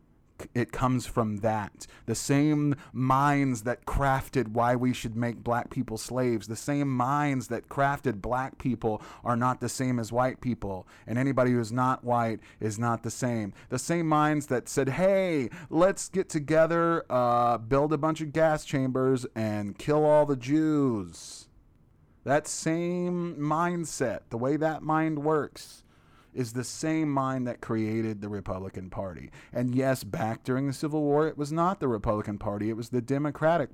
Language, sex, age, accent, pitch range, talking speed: English, male, 30-49, American, 110-140 Hz, 170 wpm